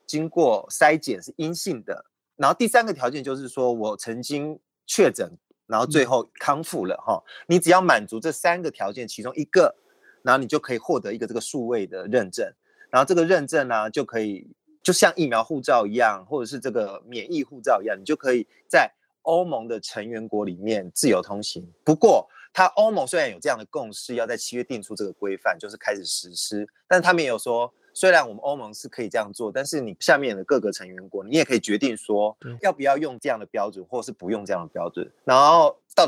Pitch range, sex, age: 115-185 Hz, male, 30-49